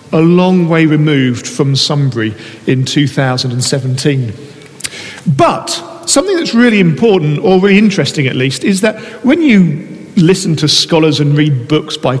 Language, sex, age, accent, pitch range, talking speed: English, male, 50-69, British, 145-205 Hz, 145 wpm